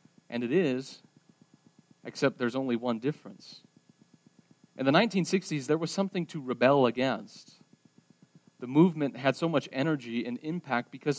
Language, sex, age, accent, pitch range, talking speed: English, male, 40-59, American, 140-195 Hz, 140 wpm